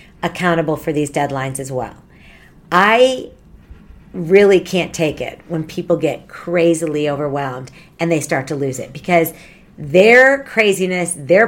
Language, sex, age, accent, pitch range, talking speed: English, female, 50-69, American, 170-235 Hz, 135 wpm